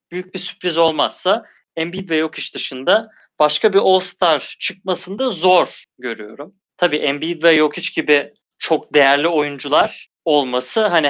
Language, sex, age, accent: Turkish, male, 30-49, native